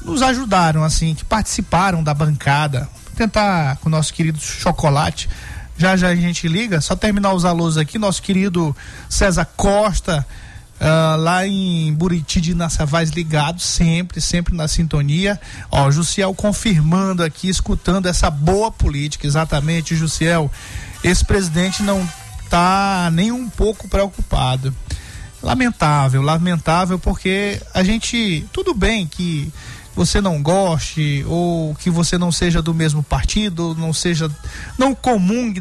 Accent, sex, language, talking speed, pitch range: Brazilian, male, Portuguese, 135 wpm, 155-195 Hz